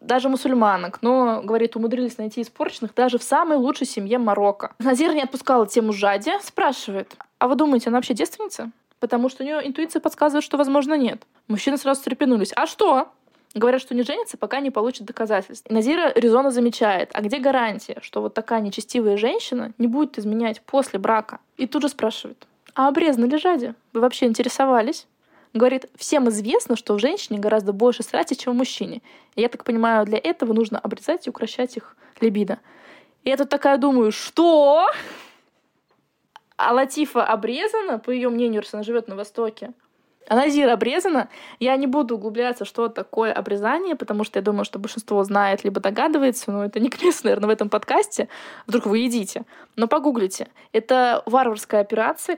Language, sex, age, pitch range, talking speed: Russian, female, 20-39, 220-270 Hz, 170 wpm